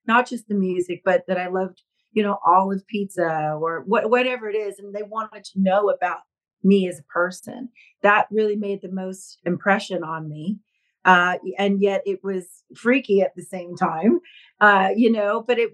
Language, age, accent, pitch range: English, 40-59, American, 195-245 Hz